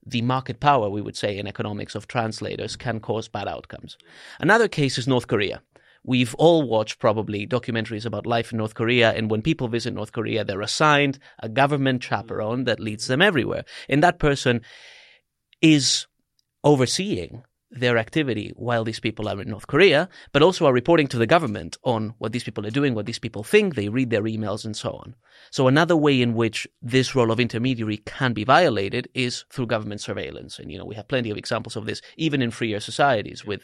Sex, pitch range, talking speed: male, 110-140 Hz, 200 wpm